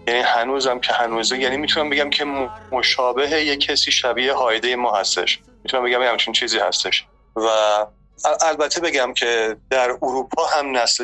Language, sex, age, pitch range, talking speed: Persian, male, 30-49, 115-140 Hz, 150 wpm